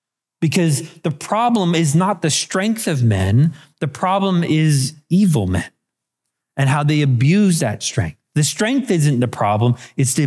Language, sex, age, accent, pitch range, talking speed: English, male, 30-49, American, 135-180 Hz, 160 wpm